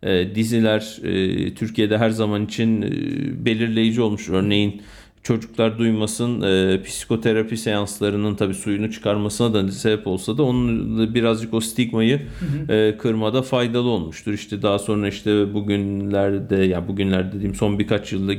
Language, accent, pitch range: Turkish, native, 105-125 Hz